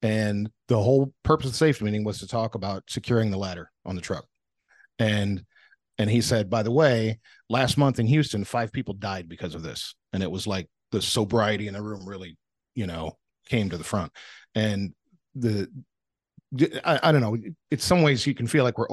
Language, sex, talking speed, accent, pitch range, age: English, male, 205 wpm, American, 105-130 Hz, 40-59